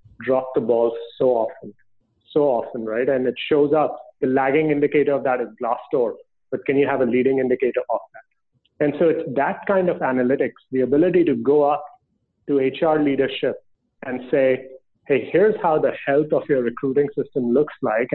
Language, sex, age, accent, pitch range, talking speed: English, male, 30-49, Indian, 135-165 Hz, 190 wpm